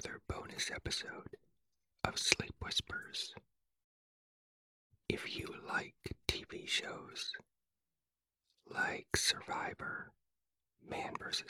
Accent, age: American, 40-59